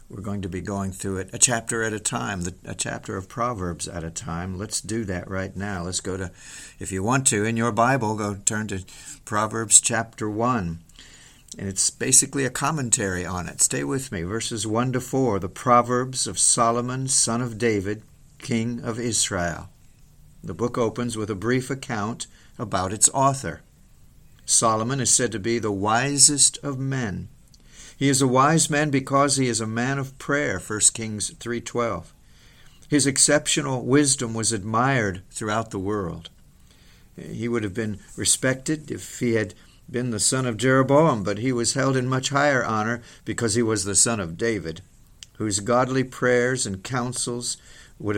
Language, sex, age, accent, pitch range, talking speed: English, male, 50-69, American, 105-130 Hz, 175 wpm